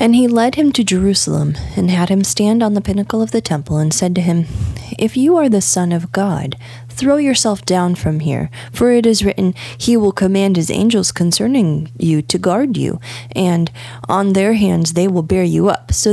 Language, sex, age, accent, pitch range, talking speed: English, female, 20-39, American, 140-200 Hz, 210 wpm